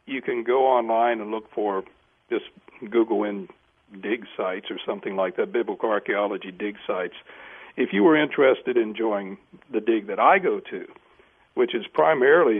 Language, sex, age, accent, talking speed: English, male, 60-79, American, 165 wpm